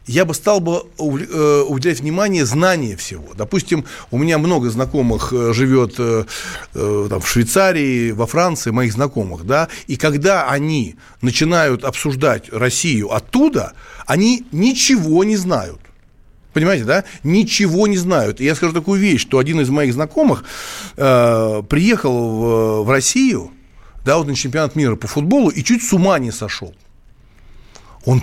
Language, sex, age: Russian, male, 60-79